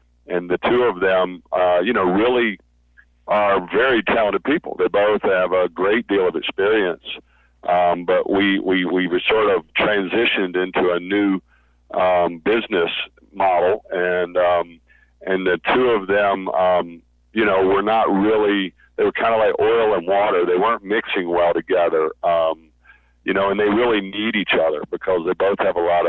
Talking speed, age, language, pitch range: 180 wpm, 50-69, English, 85-125 Hz